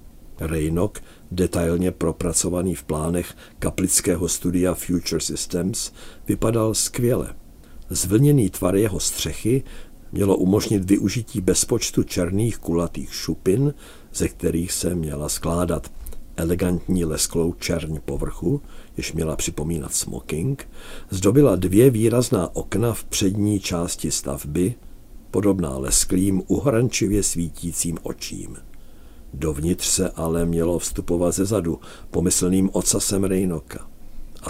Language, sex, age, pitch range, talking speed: Czech, male, 60-79, 80-95 Hz, 105 wpm